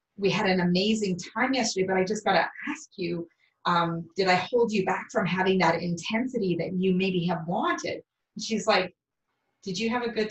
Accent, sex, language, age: American, female, English, 30-49